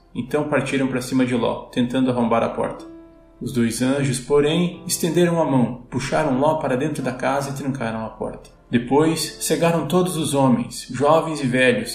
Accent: Brazilian